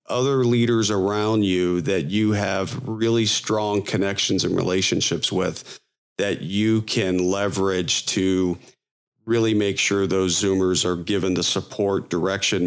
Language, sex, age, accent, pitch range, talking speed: English, male, 40-59, American, 100-120 Hz, 135 wpm